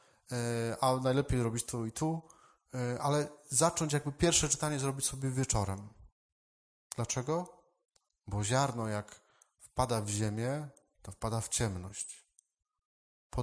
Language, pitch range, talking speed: Polish, 110-135 Hz, 115 wpm